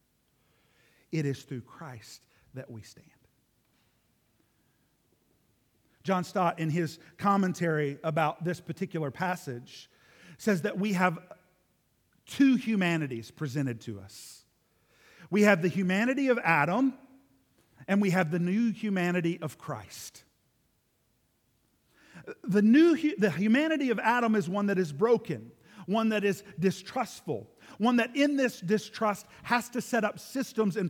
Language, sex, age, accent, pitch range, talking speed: English, male, 50-69, American, 160-220 Hz, 125 wpm